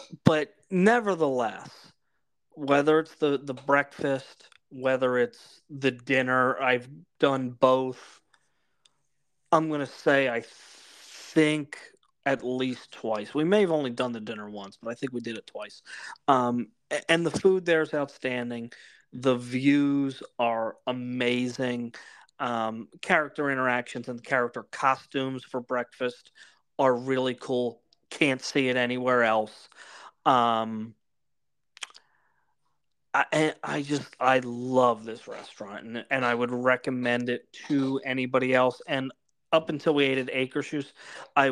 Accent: American